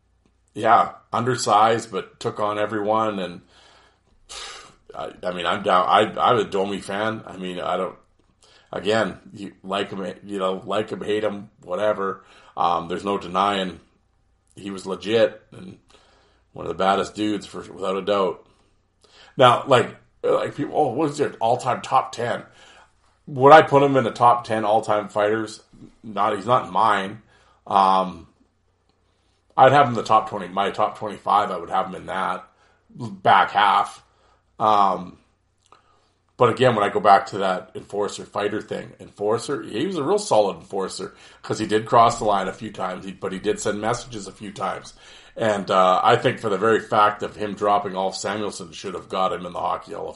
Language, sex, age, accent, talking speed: English, male, 40-59, American, 180 wpm